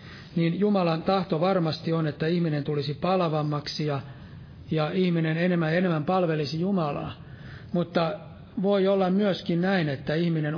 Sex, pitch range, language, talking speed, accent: male, 150-180 Hz, Finnish, 130 wpm, native